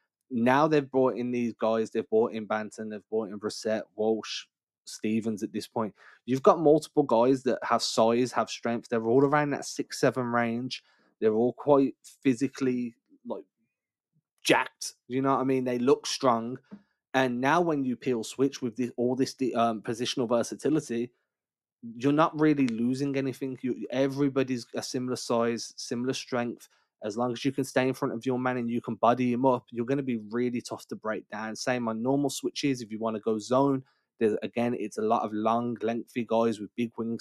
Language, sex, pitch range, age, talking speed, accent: English, male, 115-135 Hz, 20-39, 195 wpm, British